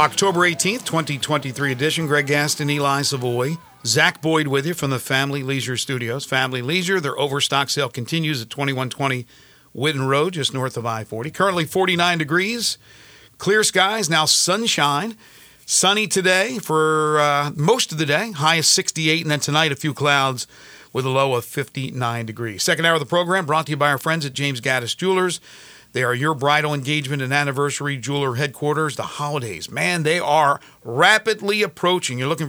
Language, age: English, 50-69